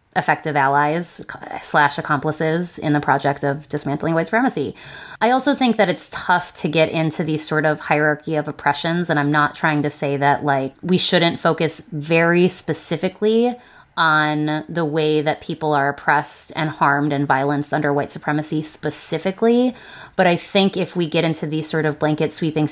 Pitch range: 150-175 Hz